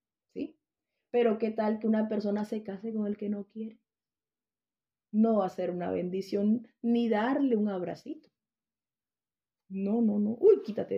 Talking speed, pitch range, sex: 155 wpm, 205-245 Hz, female